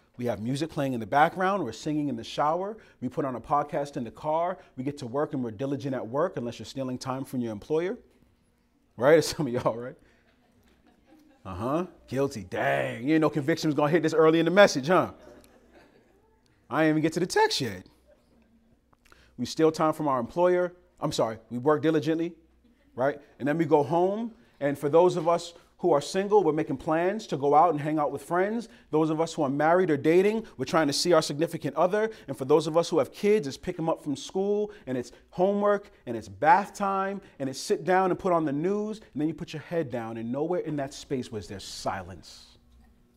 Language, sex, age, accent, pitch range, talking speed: English, male, 30-49, American, 120-170 Hz, 225 wpm